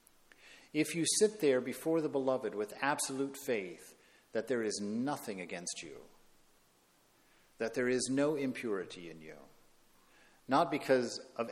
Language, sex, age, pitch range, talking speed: English, male, 50-69, 110-140 Hz, 135 wpm